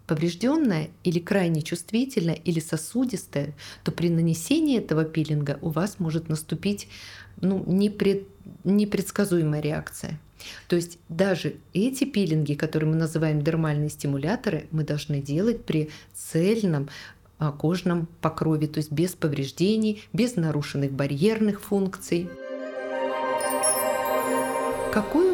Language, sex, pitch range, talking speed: Russian, female, 155-205 Hz, 105 wpm